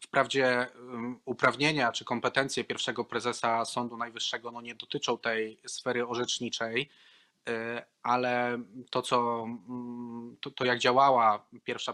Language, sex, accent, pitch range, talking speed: Polish, male, native, 110-120 Hz, 110 wpm